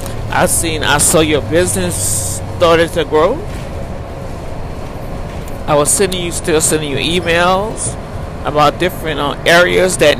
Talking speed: 125 wpm